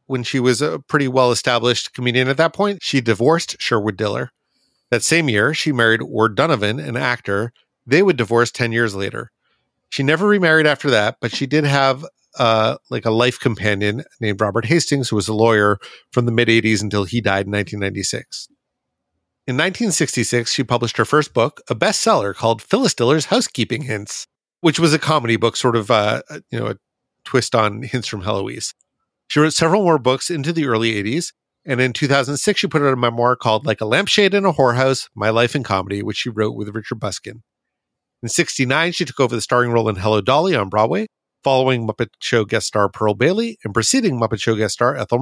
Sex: male